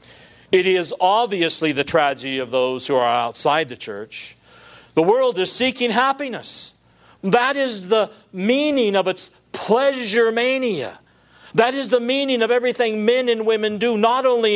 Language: English